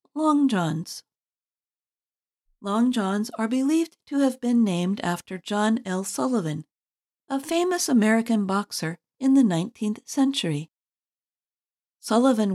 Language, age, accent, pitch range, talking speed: English, 40-59, American, 180-255 Hz, 110 wpm